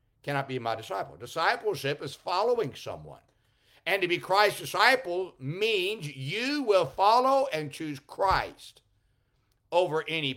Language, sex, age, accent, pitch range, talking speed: English, male, 60-79, American, 120-170 Hz, 125 wpm